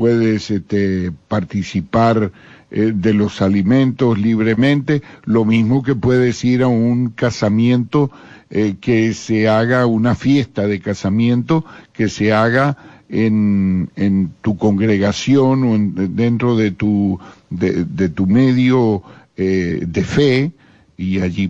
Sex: male